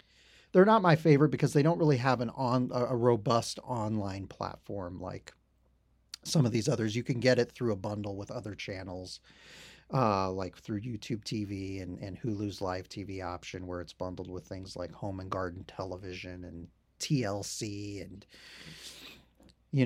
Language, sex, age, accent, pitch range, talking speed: English, male, 30-49, American, 95-150 Hz, 165 wpm